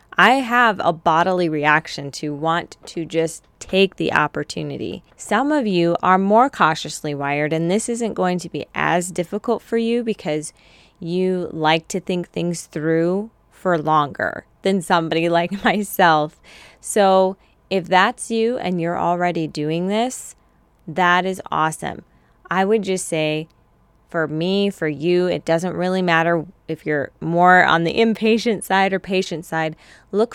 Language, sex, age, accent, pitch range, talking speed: English, female, 20-39, American, 160-195 Hz, 150 wpm